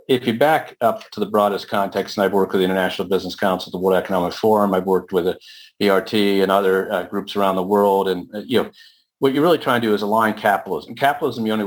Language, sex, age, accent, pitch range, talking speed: English, male, 40-59, American, 95-110 Hz, 245 wpm